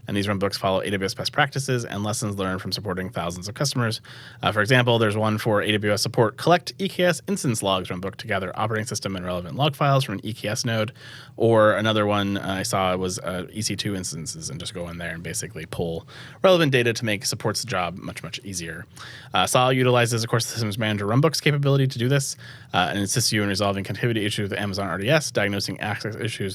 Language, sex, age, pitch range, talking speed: English, male, 30-49, 100-130 Hz, 210 wpm